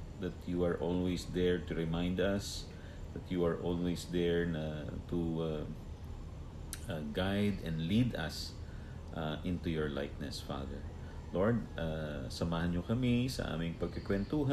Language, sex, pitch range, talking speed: English, male, 75-90 Hz, 155 wpm